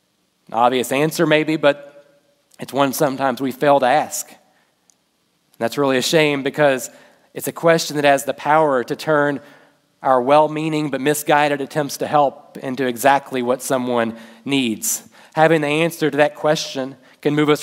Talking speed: 155 wpm